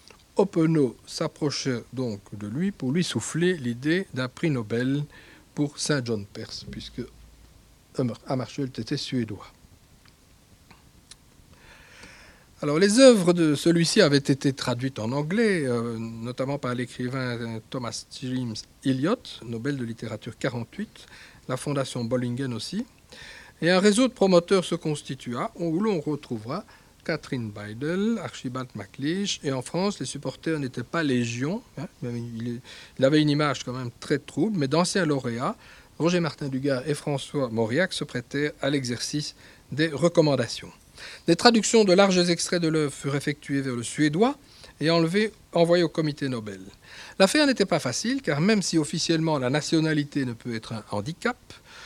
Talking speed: 145 wpm